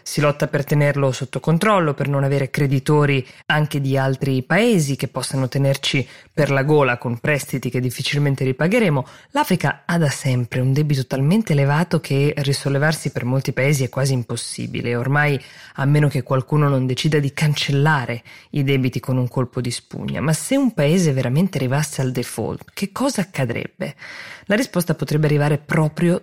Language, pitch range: Italian, 130-150 Hz